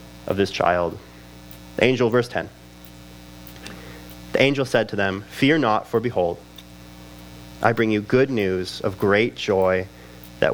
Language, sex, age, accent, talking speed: English, male, 30-49, American, 140 wpm